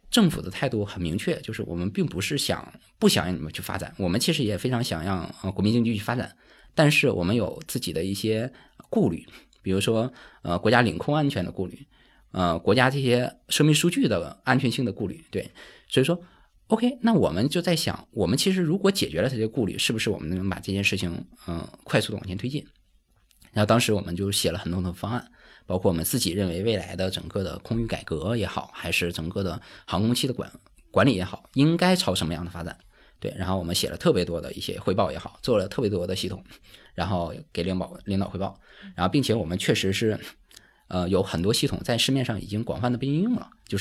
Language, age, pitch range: Chinese, 20-39, 90-125 Hz